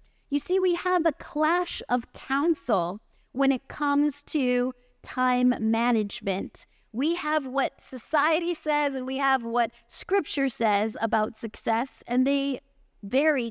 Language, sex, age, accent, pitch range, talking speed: English, female, 30-49, American, 240-305 Hz, 135 wpm